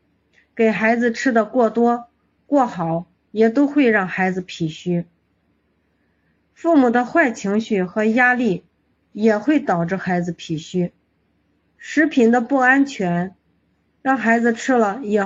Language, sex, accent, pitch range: Chinese, female, native, 175-250 Hz